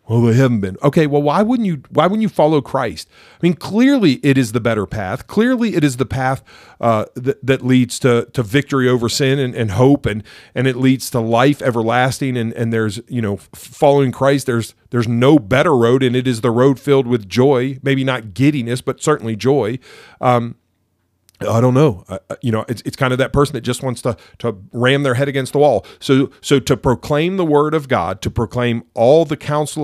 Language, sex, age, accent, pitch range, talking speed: English, male, 40-59, American, 115-140 Hz, 220 wpm